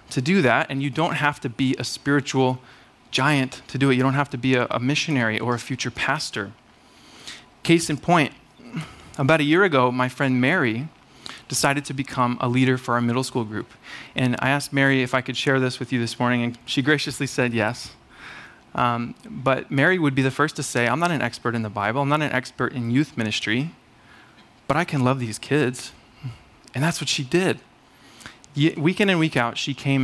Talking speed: 210 wpm